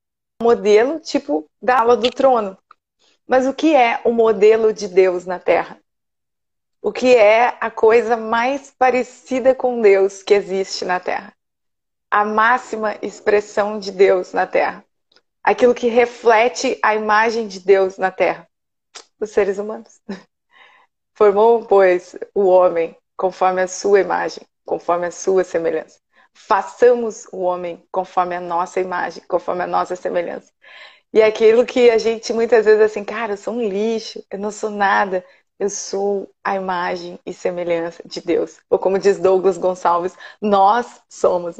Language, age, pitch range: Portuguese, 30-49, 185-230 Hz